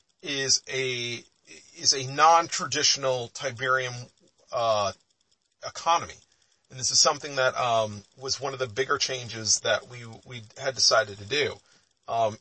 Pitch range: 120-140 Hz